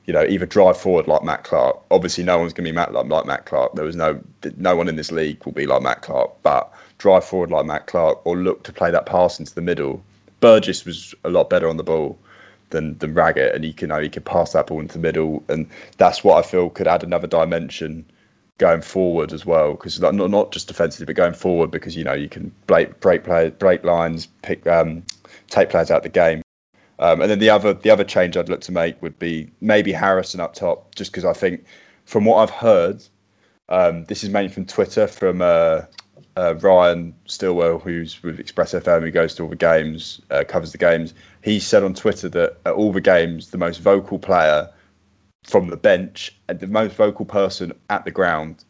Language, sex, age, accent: English, male, 20-39, British